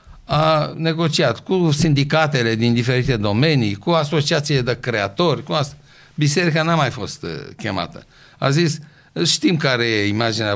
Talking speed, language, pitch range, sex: 135 wpm, Romanian, 105-145 Hz, male